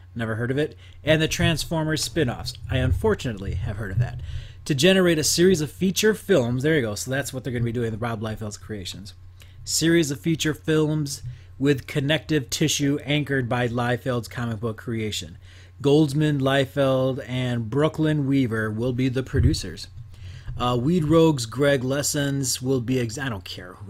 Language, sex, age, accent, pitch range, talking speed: English, male, 30-49, American, 105-140 Hz, 175 wpm